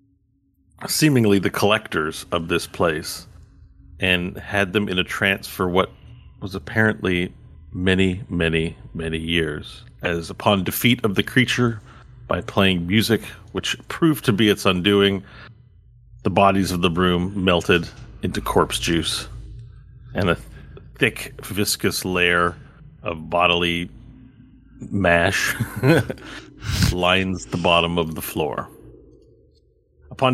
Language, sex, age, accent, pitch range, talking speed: English, male, 40-59, American, 85-110 Hz, 115 wpm